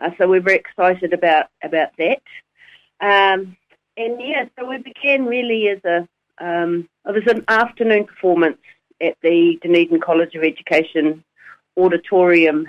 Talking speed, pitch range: 140 wpm, 165-210 Hz